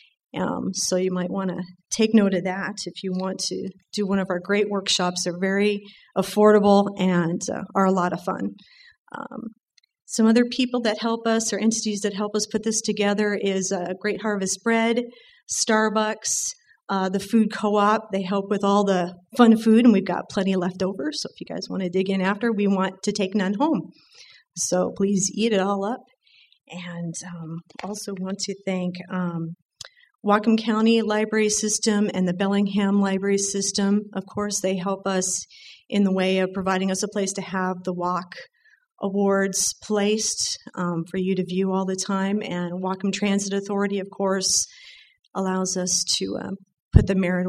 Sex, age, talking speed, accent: female, 40-59, 185 wpm, American